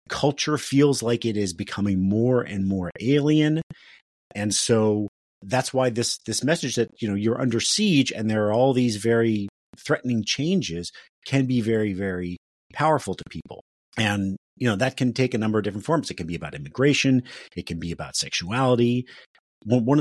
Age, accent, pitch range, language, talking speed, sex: 40-59, American, 100-125 Hz, English, 180 wpm, male